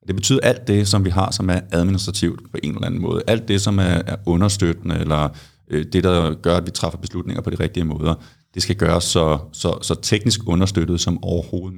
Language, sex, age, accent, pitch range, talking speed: Danish, male, 30-49, native, 85-100 Hz, 210 wpm